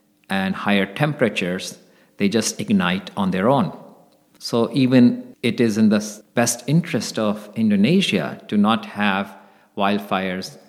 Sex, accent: male, Indian